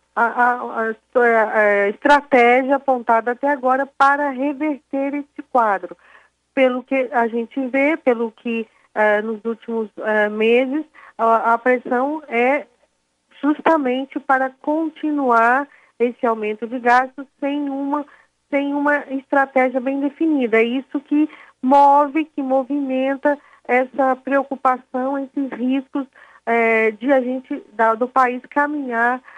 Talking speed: 120 wpm